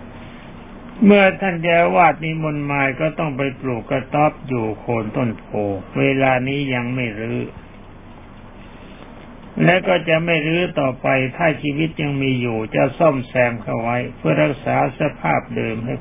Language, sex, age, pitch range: Thai, male, 60-79, 120-155 Hz